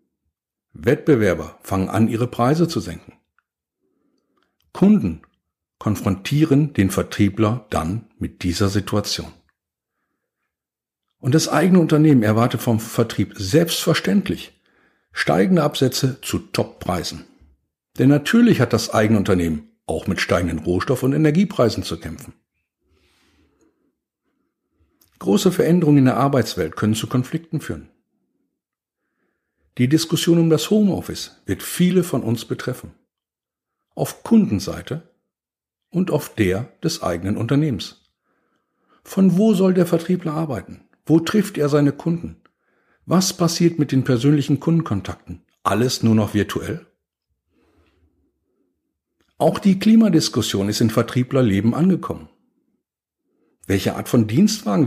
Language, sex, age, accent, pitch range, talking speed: German, male, 60-79, German, 105-165 Hz, 110 wpm